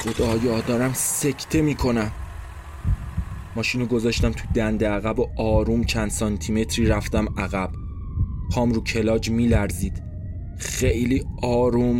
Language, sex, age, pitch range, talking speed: Persian, male, 20-39, 100-130 Hz, 115 wpm